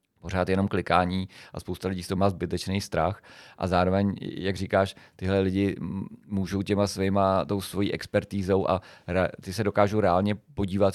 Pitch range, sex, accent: 90-100 Hz, male, native